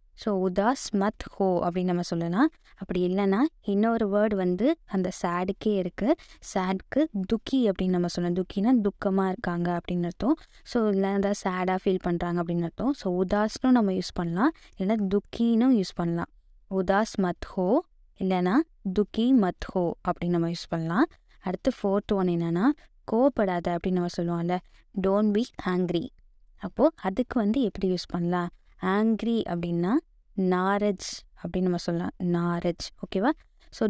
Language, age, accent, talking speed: Tamil, 20-39, native, 140 wpm